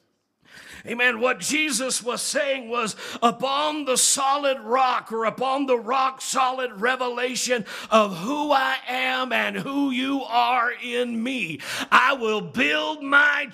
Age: 50-69